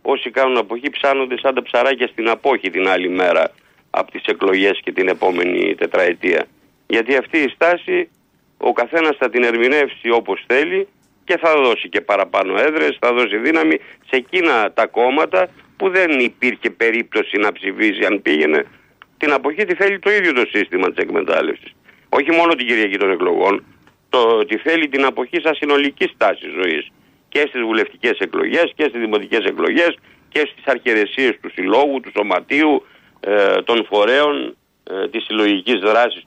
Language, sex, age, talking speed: Greek, male, 50-69, 160 wpm